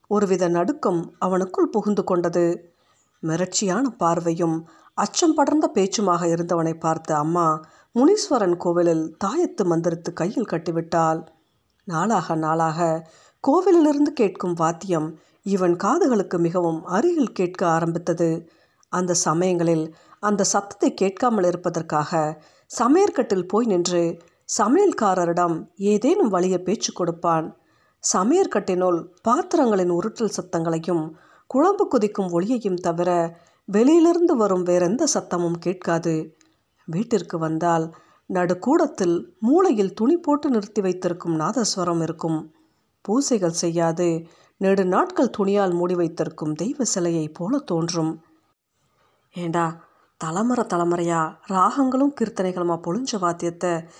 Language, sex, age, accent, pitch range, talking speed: Tamil, female, 50-69, native, 170-215 Hz, 90 wpm